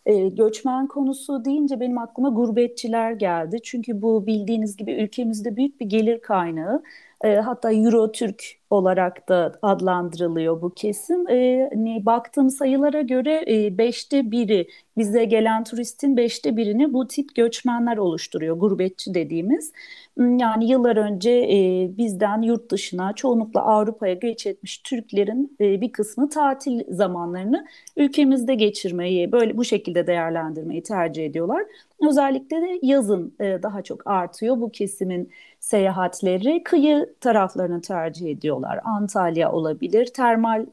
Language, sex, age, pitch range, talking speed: Turkish, female, 40-59, 190-260 Hz, 130 wpm